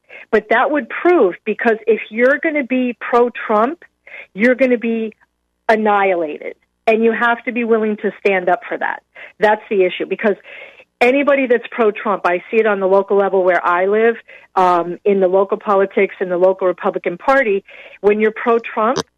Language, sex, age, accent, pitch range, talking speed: English, female, 40-59, American, 190-240 Hz, 180 wpm